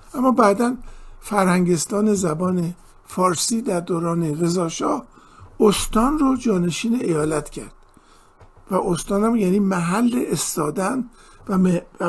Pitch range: 175-225 Hz